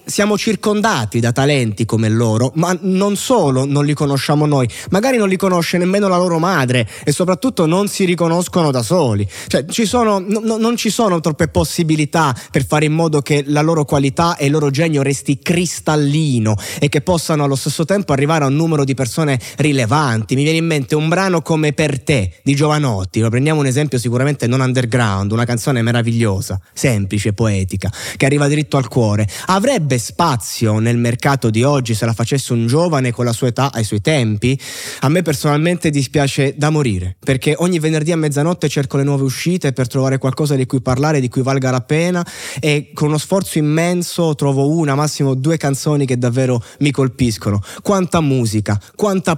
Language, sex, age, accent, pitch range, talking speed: Italian, male, 20-39, native, 125-165 Hz, 185 wpm